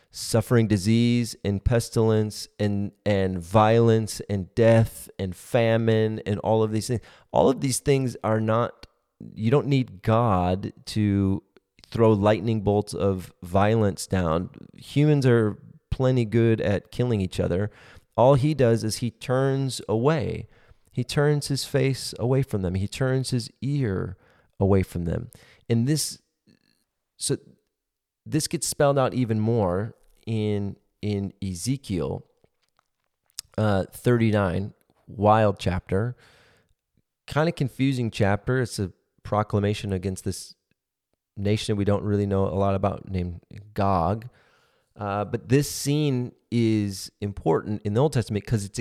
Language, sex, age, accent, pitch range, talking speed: English, male, 30-49, American, 100-120 Hz, 135 wpm